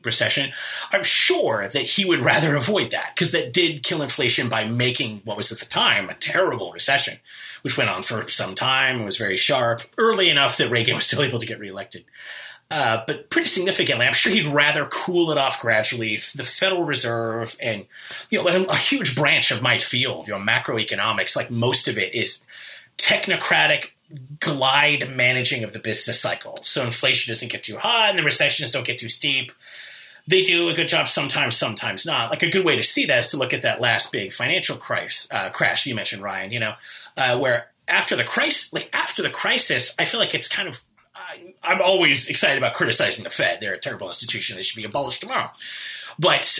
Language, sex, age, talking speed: English, male, 30-49, 205 wpm